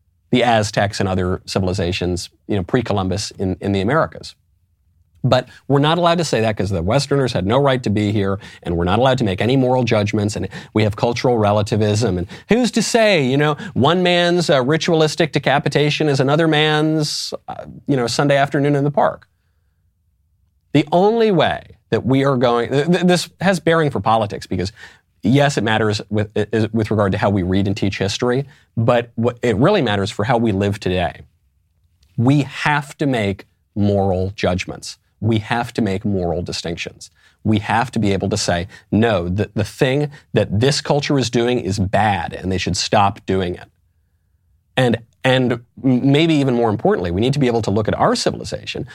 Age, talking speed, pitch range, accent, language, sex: 30-49, 190 wpm, 95-140 Hz, American, English, male